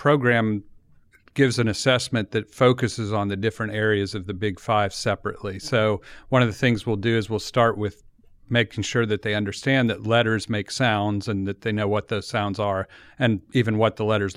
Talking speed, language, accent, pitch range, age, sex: 200 wpm, English, American, 100-120 Hz, 50-69, male